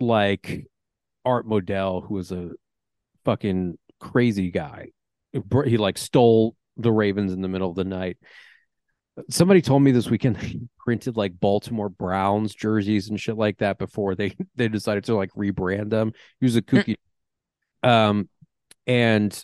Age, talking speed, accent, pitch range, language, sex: 30-49, 150 wpm, American, 95-115 Hz, English, male